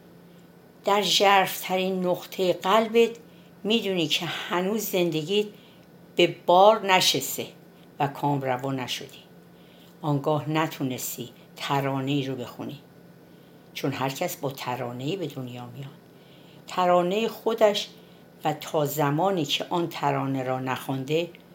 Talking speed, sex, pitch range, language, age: 105 wpm, female, 145-190 Hz, Persian, 60-79